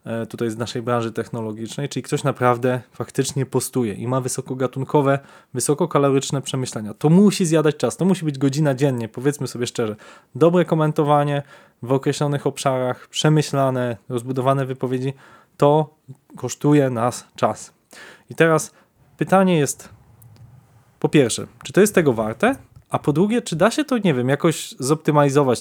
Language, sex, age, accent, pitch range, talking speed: Polish, male, 20-39, native, 125-150 Hz, 145 wpm